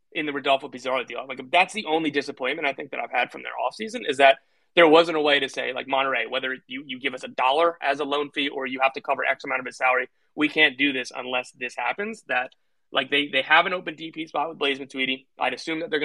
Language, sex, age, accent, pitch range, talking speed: English, male, 30-49, American, 135-160 Hz, 275 wpm